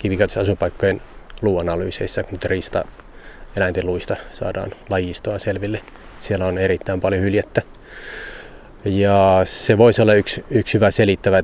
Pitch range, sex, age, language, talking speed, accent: 90-105 Hz, male, 20-39, Finnish, 110 wpm, native